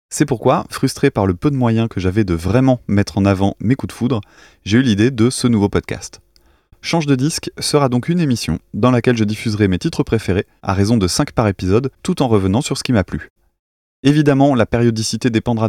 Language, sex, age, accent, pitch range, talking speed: French, male, 20-39, French, 100-130 Hz, 220 wpm